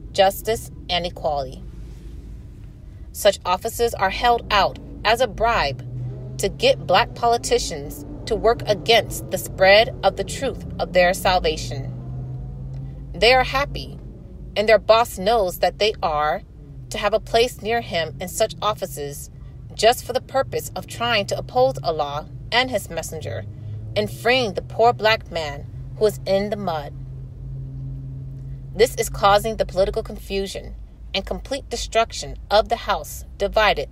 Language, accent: English, American